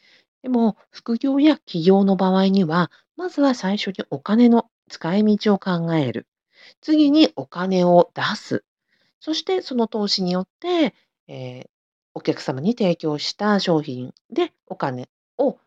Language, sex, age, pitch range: Japanese, female, 40-59, 145-225 Hz